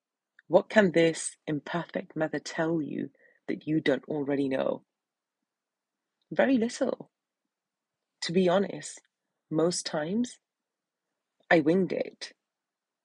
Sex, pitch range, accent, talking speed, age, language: female, 145-205 Hz, British, 100 wpm, 30-49, English